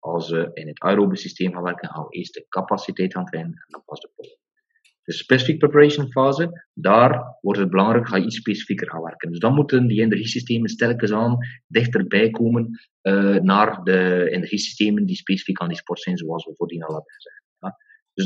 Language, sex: English, male